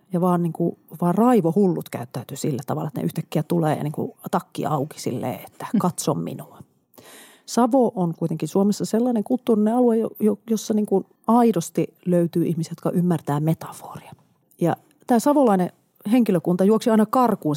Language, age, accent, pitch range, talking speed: Finnish, 40-59, native, 165-240 Hz, 145 wpm